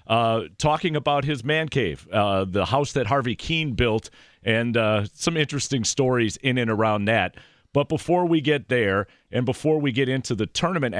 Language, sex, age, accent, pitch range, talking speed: English, male, 40-59, American, 105-130 Hz, 185 wpm